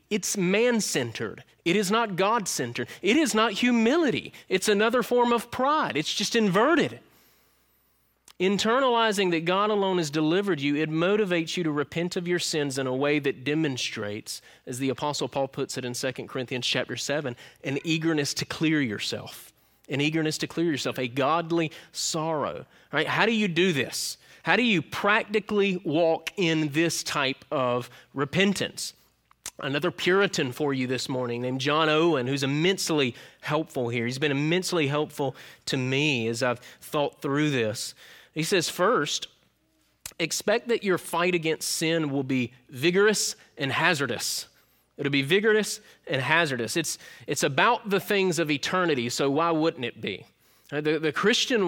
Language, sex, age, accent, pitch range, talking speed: English, male, 30-49, American, 135-190 Hz, 160 wpm